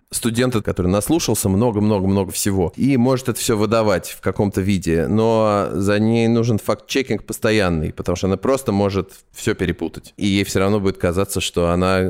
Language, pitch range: Russian, 95-115 Hz